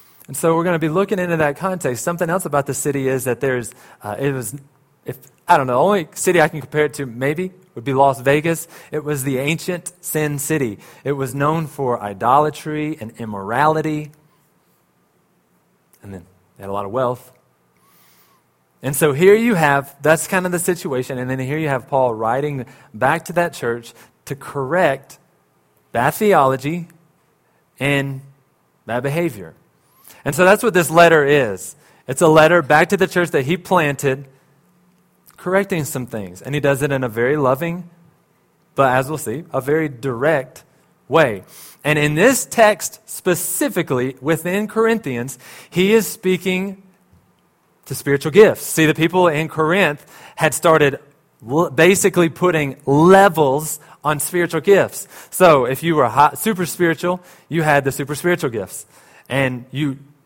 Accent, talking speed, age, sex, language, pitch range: American, 160 wpm, 30-49, male, English, 135-175 Hz